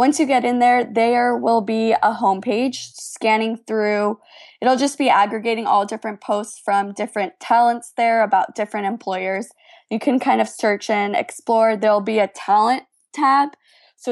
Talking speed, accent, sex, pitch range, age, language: 165 wpm, American, female, 200-235 Hz, 10-29, English